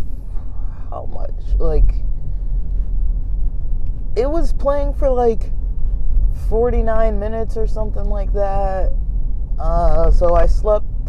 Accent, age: American, 20-39